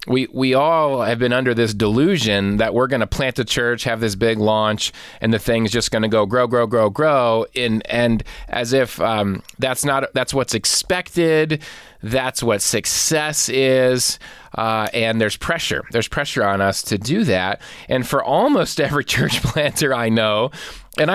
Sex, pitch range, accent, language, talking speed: male, 110-135 Hz, American, English, 180 wpm